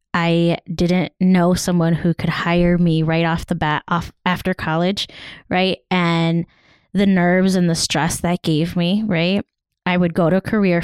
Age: 20-39